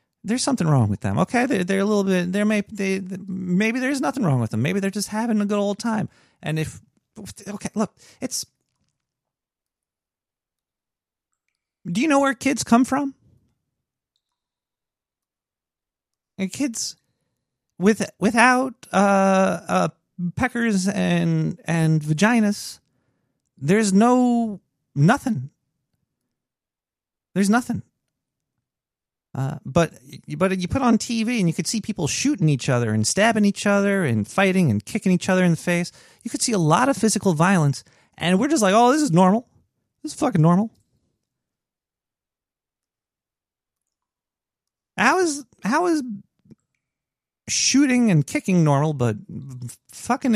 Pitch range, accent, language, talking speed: 150-225 Hz, American, English, 135 wpm